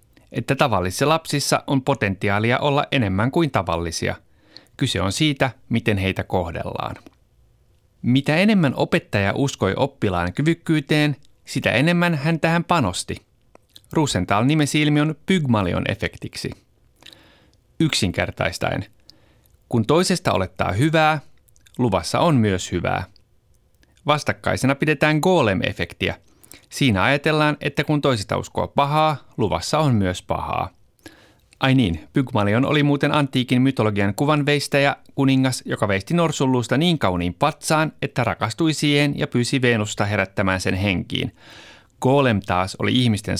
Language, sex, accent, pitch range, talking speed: Finnish, male, native, 105-150 Hz, 110 wpm